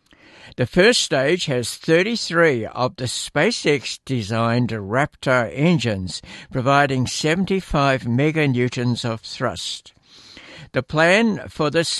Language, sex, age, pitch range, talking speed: English, male, 60-79, 120-155 Hz, 95 wpm